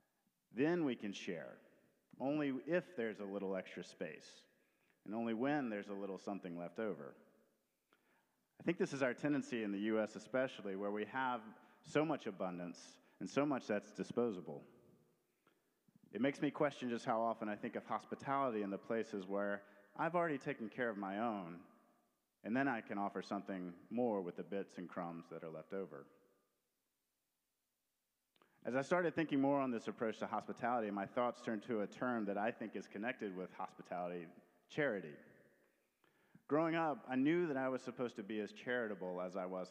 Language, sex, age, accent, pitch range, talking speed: English, male, 40-59, American, 100-135 Hz, 180 wpm